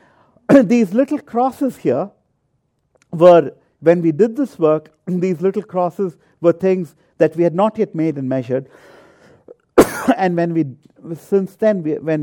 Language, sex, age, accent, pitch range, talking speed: English, male, 50-69, Indian, 140-200 Hz, 145 wpm